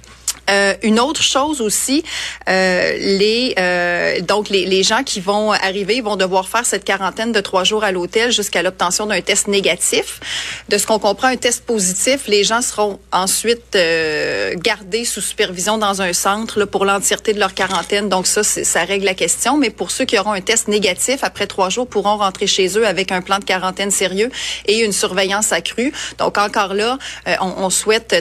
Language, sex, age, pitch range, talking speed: French, female, 30-49, 185-215 Hz, 200 wpm